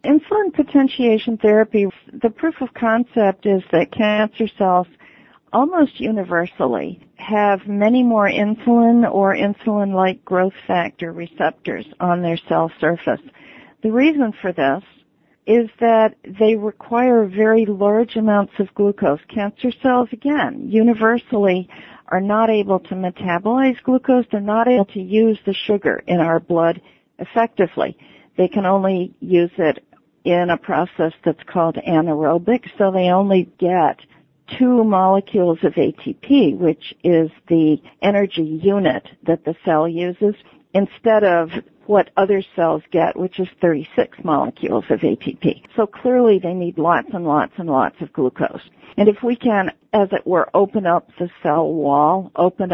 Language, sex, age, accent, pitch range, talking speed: English, female, 50-69, American, 175-225 Hz, 140 wpm